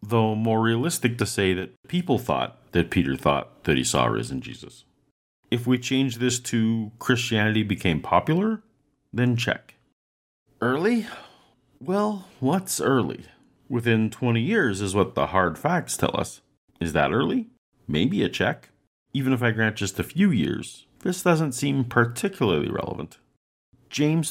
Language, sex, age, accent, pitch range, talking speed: English, male, 40-59, American, 100-160 Hz, 150 wpm